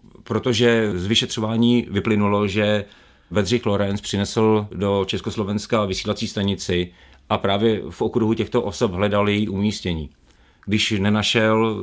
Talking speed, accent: 115 wpm, native